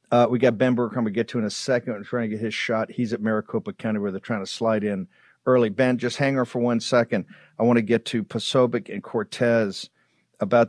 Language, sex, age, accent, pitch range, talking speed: English, male, 50-69, American, 115-130 Hz, 260 wpm